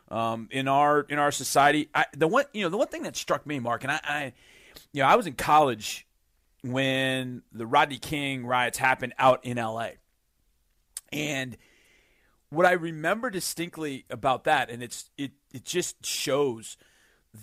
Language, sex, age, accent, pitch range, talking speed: English, male, 40-59, American, 120-155 Hz, 170 wpm